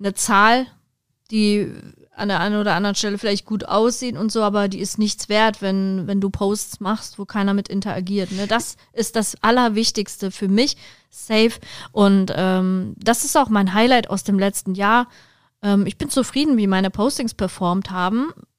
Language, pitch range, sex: German, 195-225 Hz, female